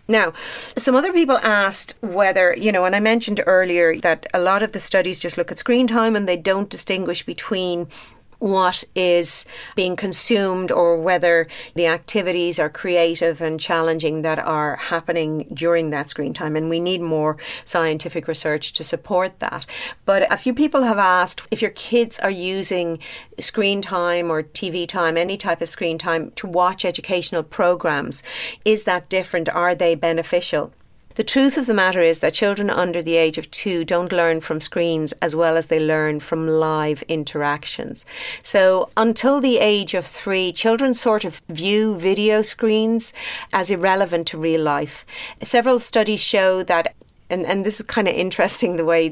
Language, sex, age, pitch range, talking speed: English, female, 40-59, 165-205 Hz, 175 wpm